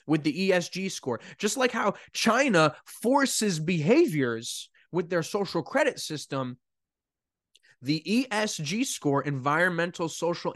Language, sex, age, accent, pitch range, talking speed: English, male, 20-39, American, 150-205 Hz, 115 wpm